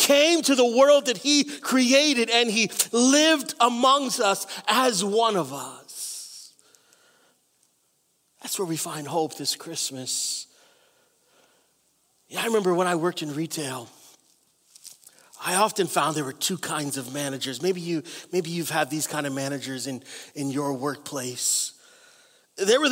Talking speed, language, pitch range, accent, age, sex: 145 wpm, English, 160-220 Hz, American, 30-49, male